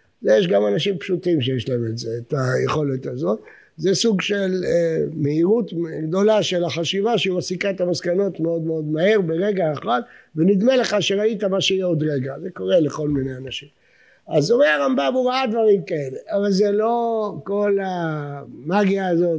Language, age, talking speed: English, 60-79, 120 wpm